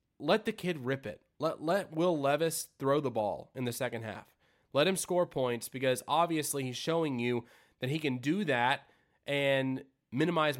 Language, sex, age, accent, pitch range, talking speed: English, male, 20-39, American, 125-155 Hz, 180 wpm